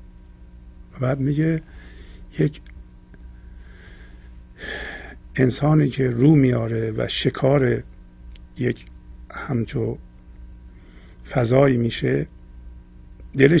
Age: 50-69